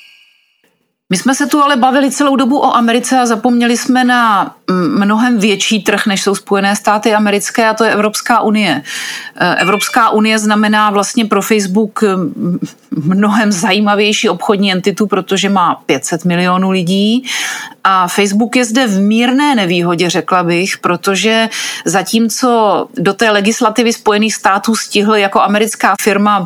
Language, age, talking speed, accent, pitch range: Czech, 40-59, 140 wpm, native, 195-225 Hz